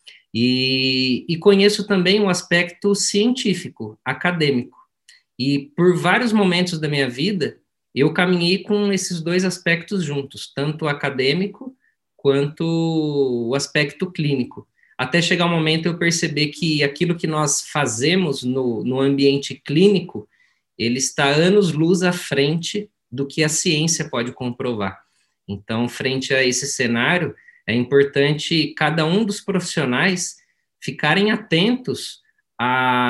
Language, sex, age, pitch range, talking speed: Portuguese, male, 20-39, 135-180 Hz, 125 wpm